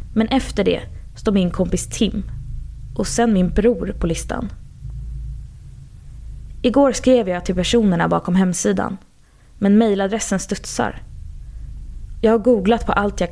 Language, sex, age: Swedish, female, 20-39